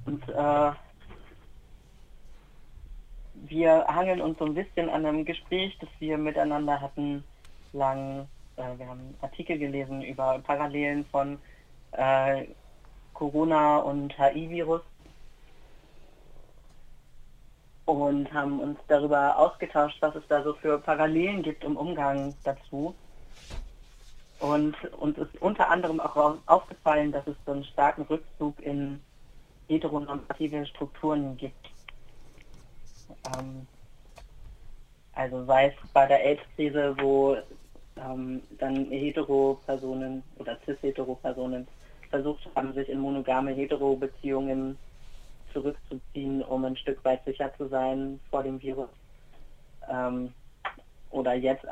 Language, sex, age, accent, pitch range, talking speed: German, female, 30-49, German, 130-150 Hz, 110 wpm